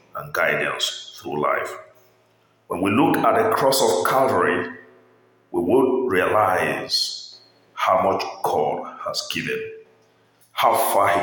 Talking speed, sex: 125 wpm, male